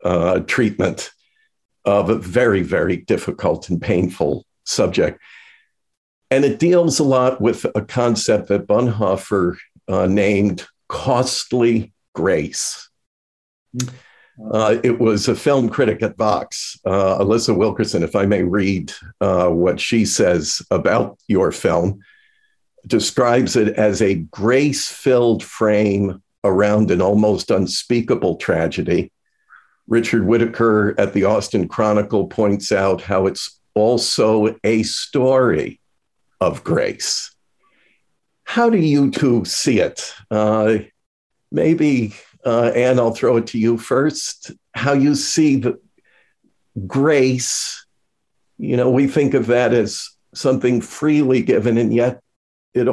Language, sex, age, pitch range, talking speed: English, male, 50-69, 105-135 Hz, 120 wpm